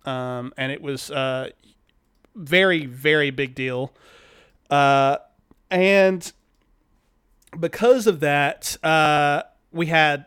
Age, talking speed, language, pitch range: 30-49, 100 wpm, English, 145-180 Hz